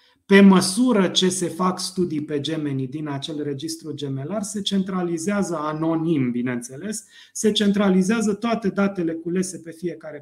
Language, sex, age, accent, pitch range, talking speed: Romanian, male, 30-49, native, 150-195 Hz, 135 wpm